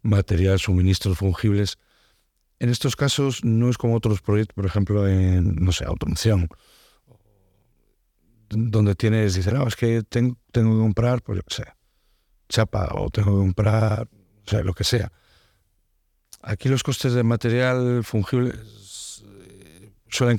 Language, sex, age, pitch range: Spanish, male, 60-79, 95-110 Hz